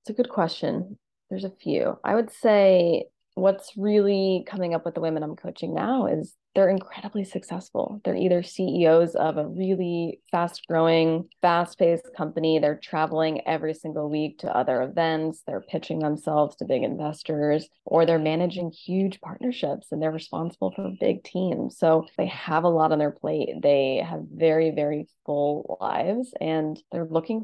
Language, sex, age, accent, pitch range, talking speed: English, female, 20-39, American, 155-190 Hz, 170 wpm